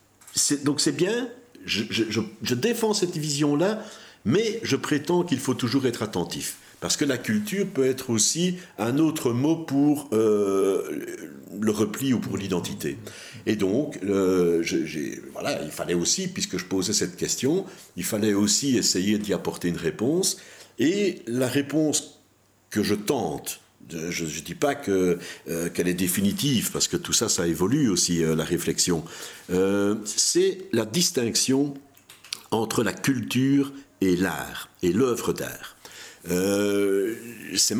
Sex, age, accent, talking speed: male, 60-79, French, 150 wpm